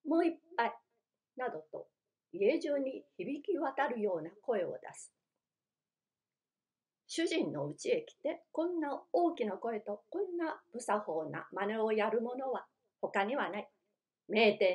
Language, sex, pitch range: Japanese, female, 210-325 Hz